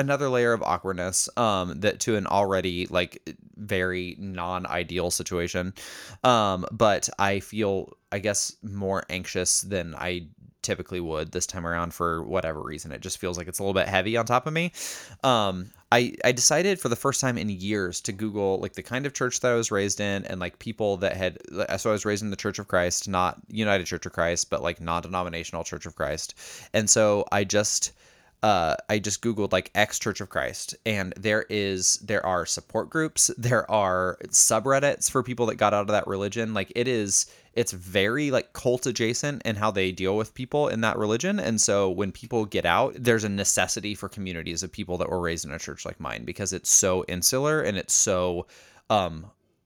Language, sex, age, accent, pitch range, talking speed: English, male, 20-39, American, 90-115 Hz, 205 wpm